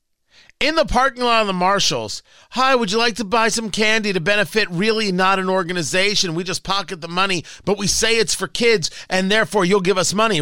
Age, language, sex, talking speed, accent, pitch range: 40-59, English, male, 220 wpm, American, 155-230 Hz